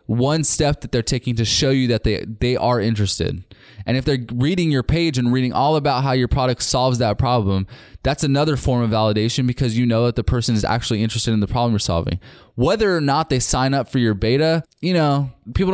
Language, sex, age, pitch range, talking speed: English, male, 20-39, 110-135 Hz, 230 wpm